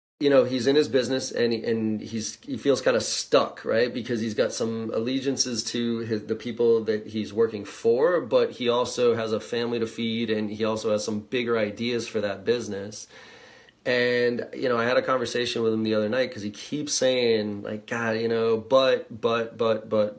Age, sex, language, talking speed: 30-49, male, English, 210 wpm